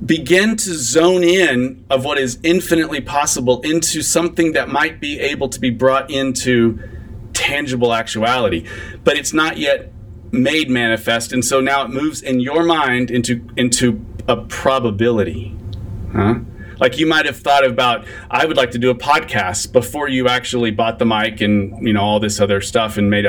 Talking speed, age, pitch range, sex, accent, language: 175 wpm, 40-59, 110-155 Hz, male, American, English